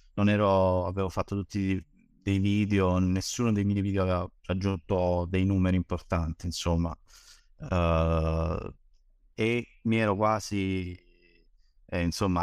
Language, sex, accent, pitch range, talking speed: Italian, male, native, 90-100 Hz, 110 wpm